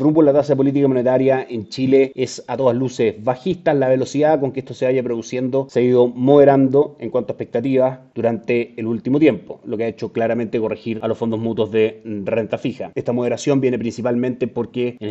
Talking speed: 205 wpm